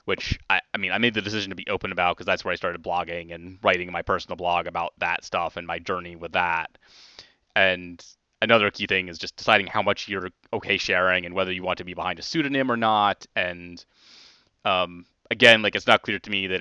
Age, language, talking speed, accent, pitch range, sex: 20-39, English, 230 wpm, American, 90-110 Hz, male